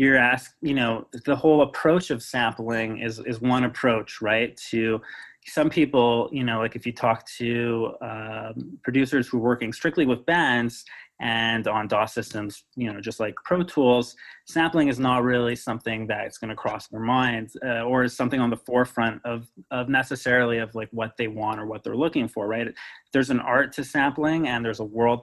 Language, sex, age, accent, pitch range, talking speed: English, male, 30-49, American, 115-130 Hz, 195 wpm